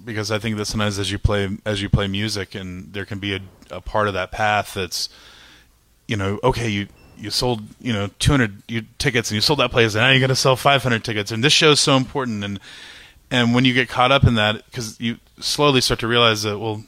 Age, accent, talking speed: 30-49, American, 250 wpm